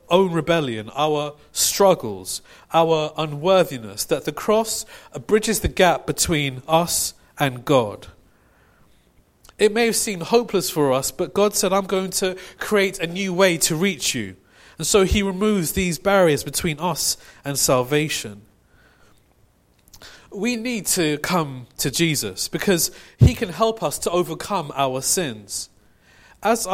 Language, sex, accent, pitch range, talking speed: English, male, British, 145-195 Hz, 140 wpm